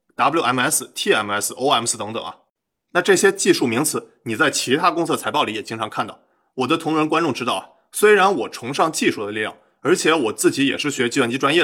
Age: 20-39